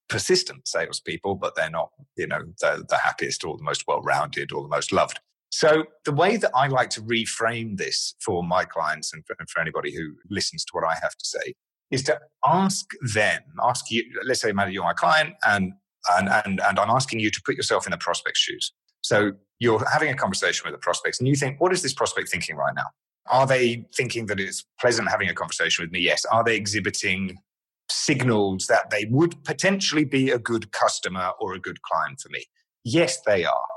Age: 30-49